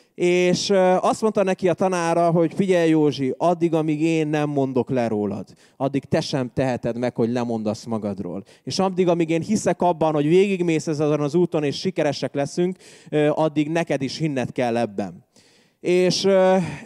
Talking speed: 160 wpm